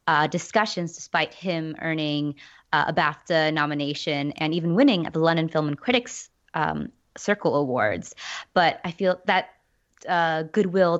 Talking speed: 140 wpm